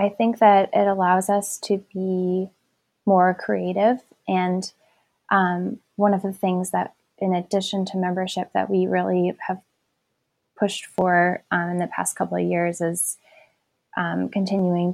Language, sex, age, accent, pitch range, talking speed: English, female, 10-29, American, 180-195 Hz, 150 wpm